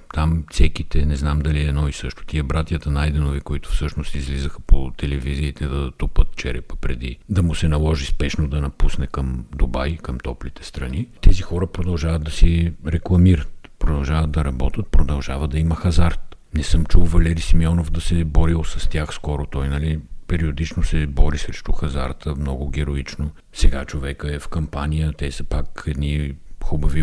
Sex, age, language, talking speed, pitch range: male, 50-69, Bulgarian, 170 wpm, 75-90 Hz